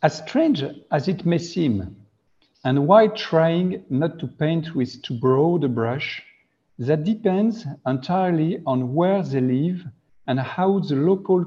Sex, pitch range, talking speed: male, 130-185 Hz, 145 wpm